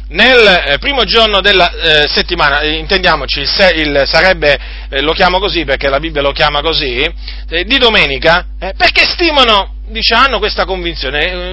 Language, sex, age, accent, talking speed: Italian, male, 40-59, native, 165 wpm